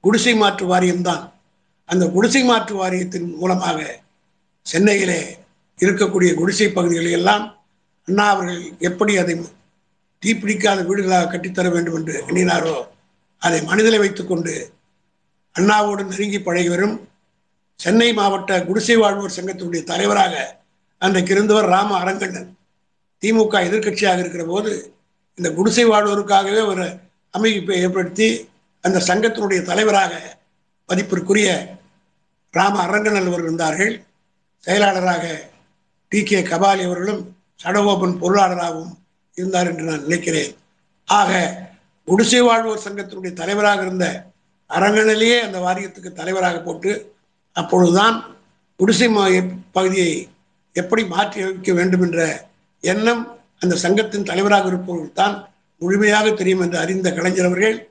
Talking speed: 105 wpm